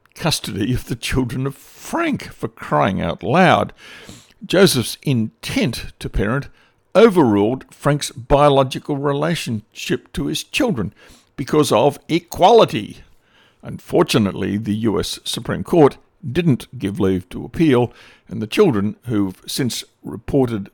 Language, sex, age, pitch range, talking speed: English, male, 60-79, 110-145 Hz, 120 wpm